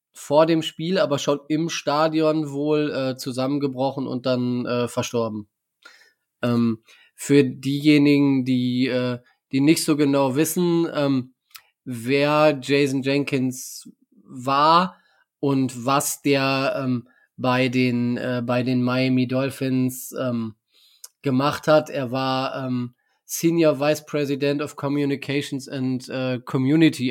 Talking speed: 115 wpm